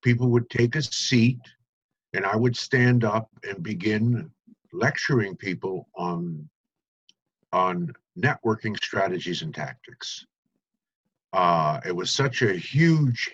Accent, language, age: American, English, 50-69